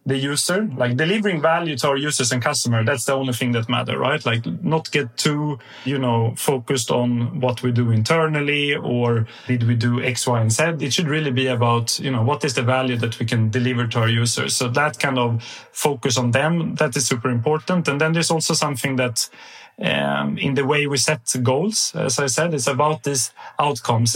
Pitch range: 120-150 Hz